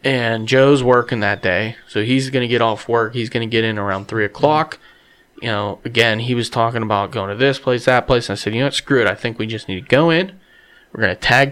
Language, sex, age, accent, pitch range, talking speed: English, male, 30-49, American, 110-135 Hz, 260 wpm